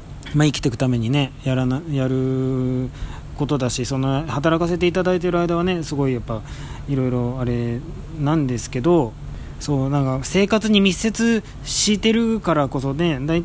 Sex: male